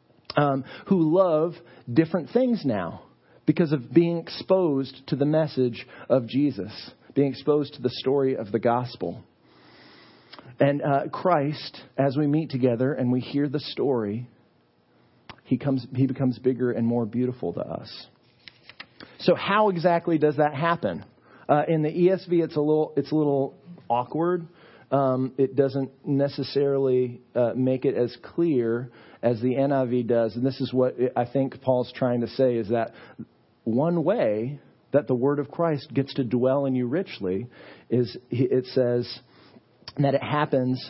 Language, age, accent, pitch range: English, 40-59, American, 125-165 Hz